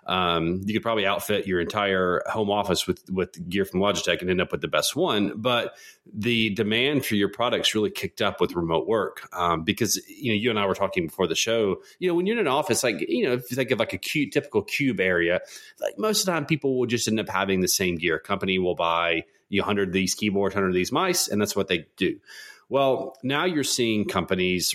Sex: male